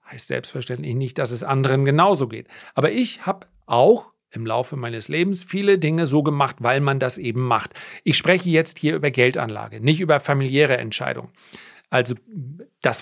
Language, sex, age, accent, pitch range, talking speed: German, male, 40-59, German, 125-165 Hz, 170 wpm